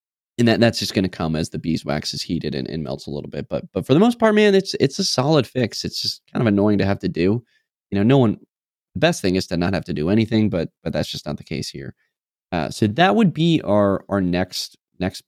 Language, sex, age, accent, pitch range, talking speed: English, male, 20-39, American, 90-120 Hz, 275 wpm